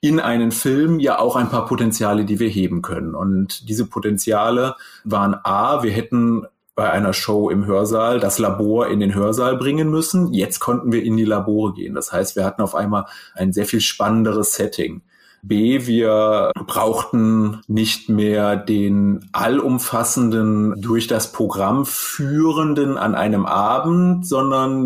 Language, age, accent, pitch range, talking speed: German, 30-49, German, 105-120 Hz, 155 wpm